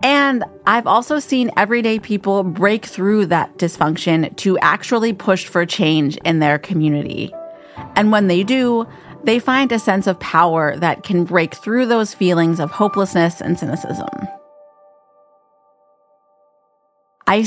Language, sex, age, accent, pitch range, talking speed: English, female, 30-49, American, 170-230 Hz, 135 wpm